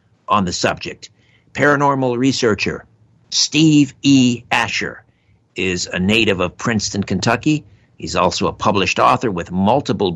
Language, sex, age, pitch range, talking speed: English, male, 60-79, 100-130 Hz, 125 wpm